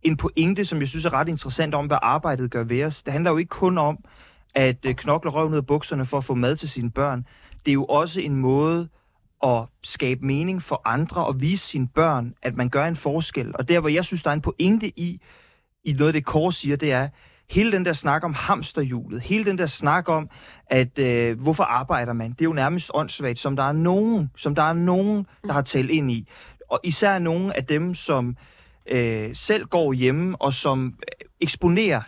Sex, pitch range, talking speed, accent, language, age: male, 135-175 Hz, 220 wpm, native, Danish, 30-49